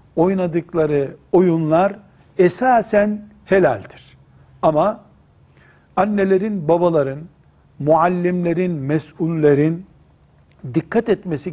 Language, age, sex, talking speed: Turkish, 60-79, male, 55 wpm